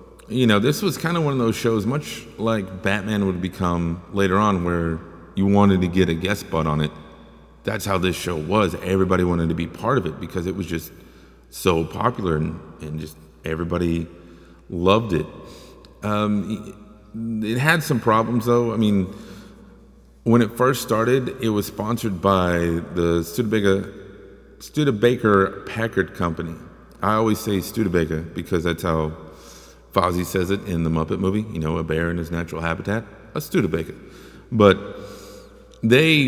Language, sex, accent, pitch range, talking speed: English, male, American, 85-105 Hz, 160 wpm